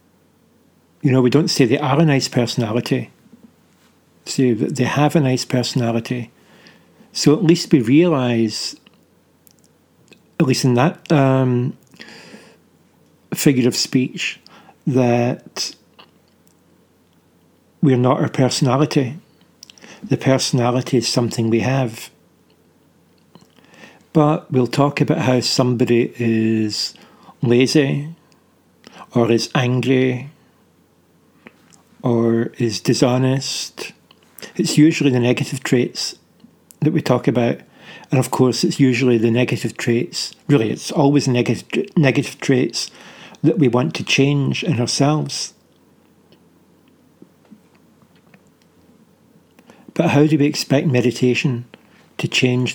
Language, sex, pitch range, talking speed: English, male, 120-150 Hz, 105 wpm